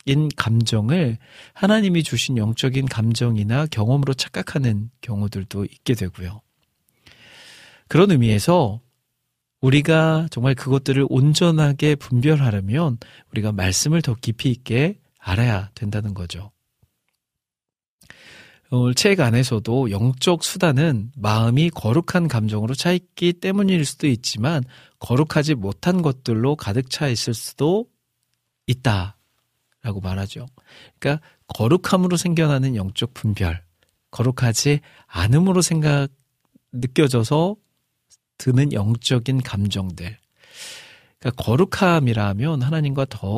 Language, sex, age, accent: Korean, male, 40-59, native